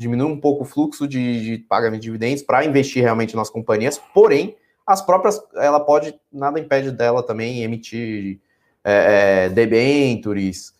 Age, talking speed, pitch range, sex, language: 20-39, 155 wpm, 110-145 Hz, male, Portuguese